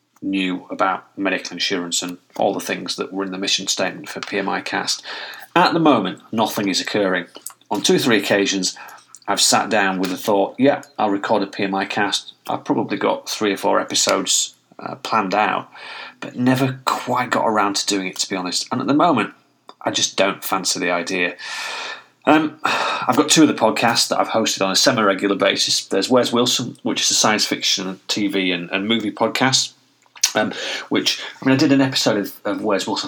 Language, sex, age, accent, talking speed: English, male, 30-49, British, 200 wpm